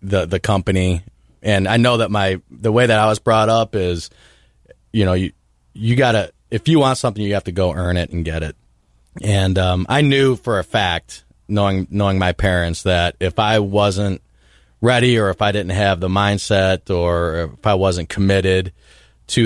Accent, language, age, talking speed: American, English, 30-49, 195 wpm